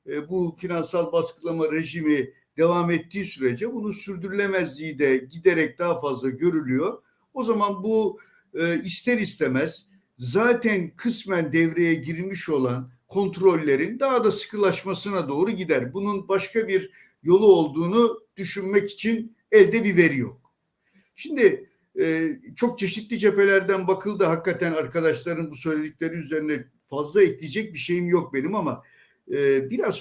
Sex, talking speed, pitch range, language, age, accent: male, 120 wpm, 155-200 Hz, Turkish, 60-79, native